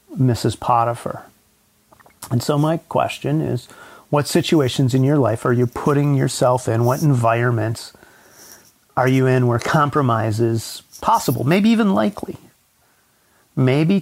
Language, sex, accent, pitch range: English, male, American, 115-135 Hz